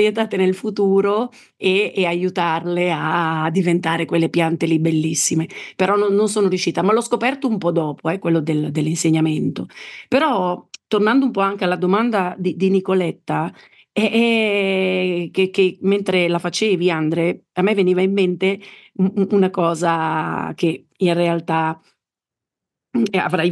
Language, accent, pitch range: Italian, native, 165-195 Hz